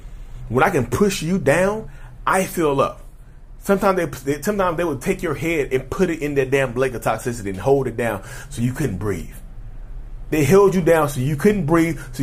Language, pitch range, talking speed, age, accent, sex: English, 125-165 Hz, 210 wpm, 30-49, American, male